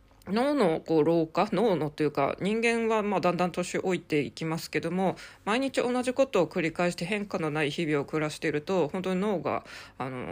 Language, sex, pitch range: Japanese, female, 155-210 Hz